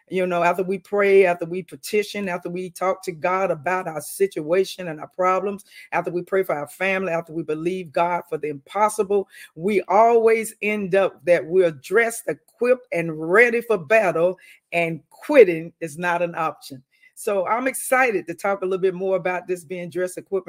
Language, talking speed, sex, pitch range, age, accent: English, 185 wpm, female, 165-200 Hz, 50-69, American